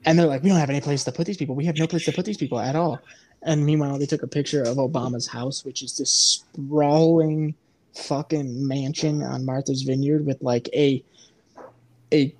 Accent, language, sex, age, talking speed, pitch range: American, English, male, 20-39, 215 wpm, 135-170 Hz